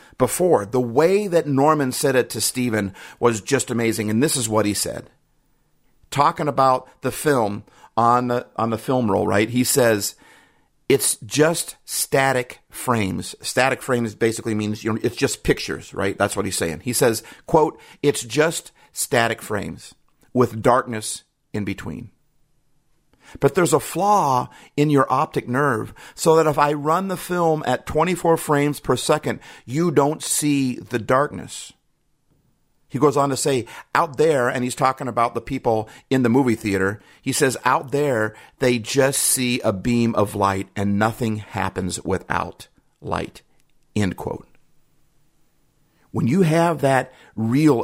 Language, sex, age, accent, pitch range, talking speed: English, male, 50-69, American, 115-155 Hz, 155 wpm